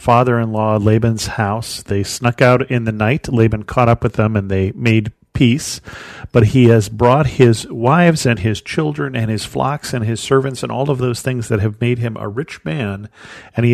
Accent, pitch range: American, 105-125 Hz